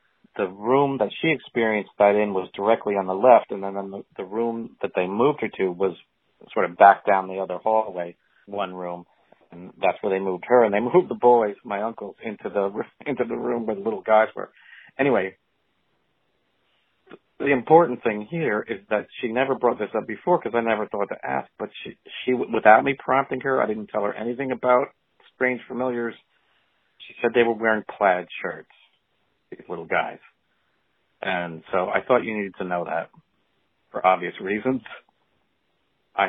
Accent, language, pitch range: American, English, 95-120 Hz